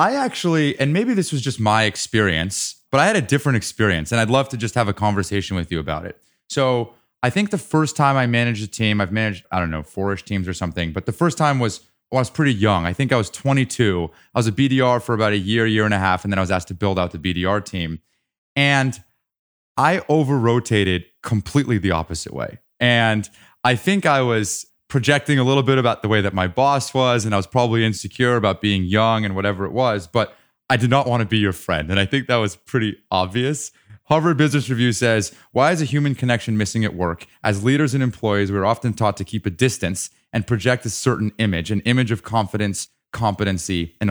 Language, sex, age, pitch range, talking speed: English, male, 30-49, 100-130 Hz, 230 wpm